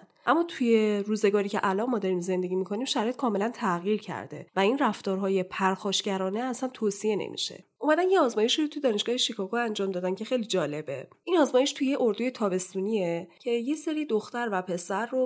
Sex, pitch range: female, 185-250 Hz